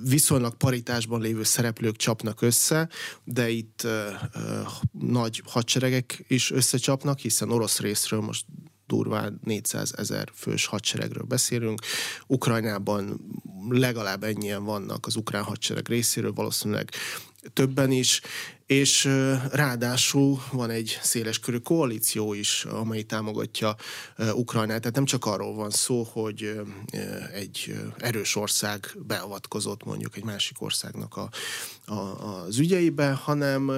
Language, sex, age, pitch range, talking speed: Hungarian, male, 30-49, 110-135 Hz, 115 wpm